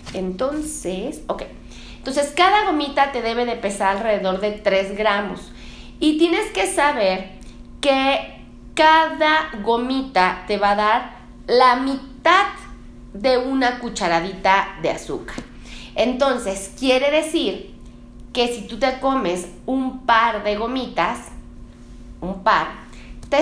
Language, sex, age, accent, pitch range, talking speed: Spanish, female, 30-49, Mexican, 205-295 Hz, 120 wpm